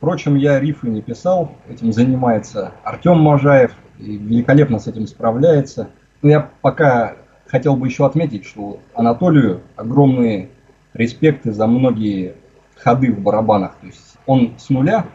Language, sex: Russian, male